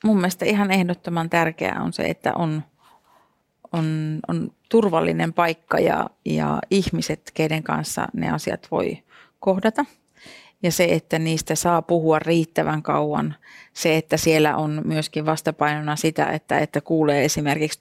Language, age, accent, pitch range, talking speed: Finnish, 30-49, native, 150-170 Hz, 135 wpm